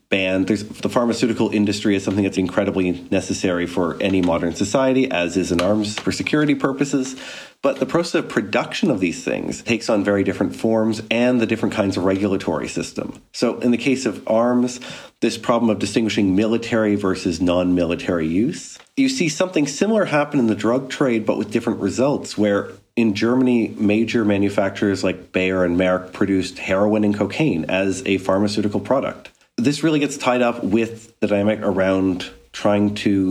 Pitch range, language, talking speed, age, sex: 95-115 Hz, English, 170 wpm, 40-59, male